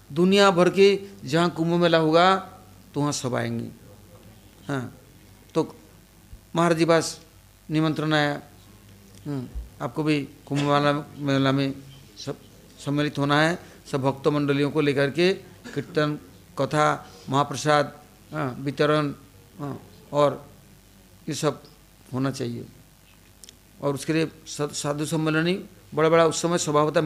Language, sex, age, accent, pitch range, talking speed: English, male, 60-79, Indian, 120-160 Hz, 115 wpm